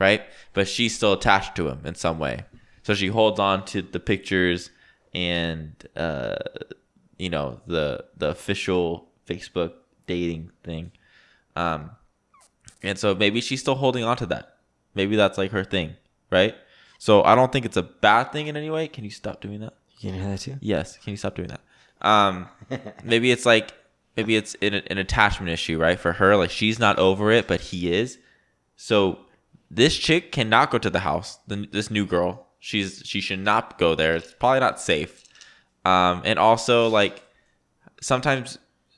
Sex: male